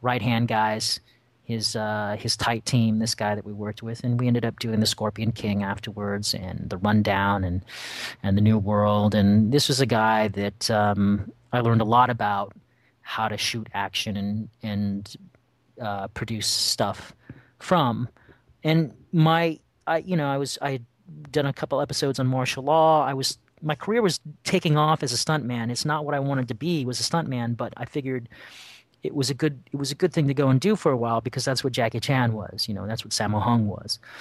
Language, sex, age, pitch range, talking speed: English, male, 30-49, 105-140 Hz, 210 wpm